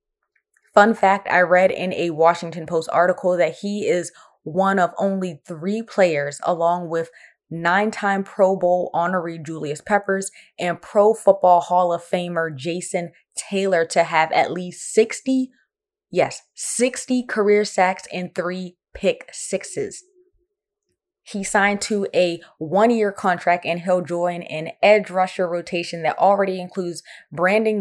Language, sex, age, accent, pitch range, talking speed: English, female, 20-39, American, 170-200 Hz, 135 wpm